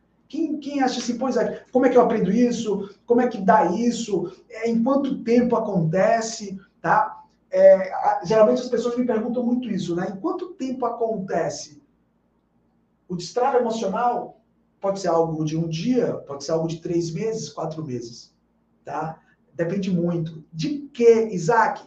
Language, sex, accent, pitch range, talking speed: Portuguese, male, Brazilian, 175-235 Hz, 150 wpm